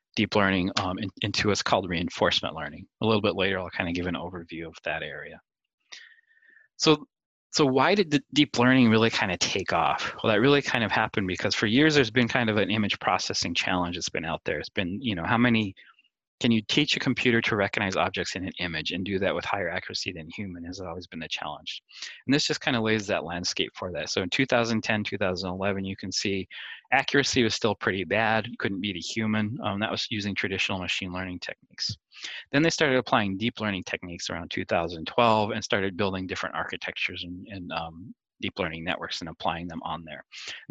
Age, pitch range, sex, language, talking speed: 20-39, 95-125 Hz, male, English, 215 wpm